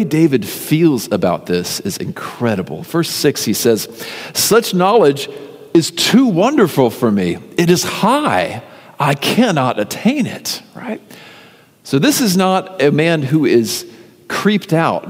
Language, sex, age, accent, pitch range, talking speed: English, male, 50-69, American, 100-145 Hz, 140 wpm